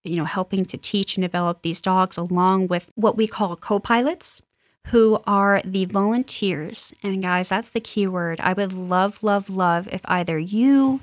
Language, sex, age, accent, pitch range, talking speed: English, female, 20-39, American, 180-210 Hz, 180 wpm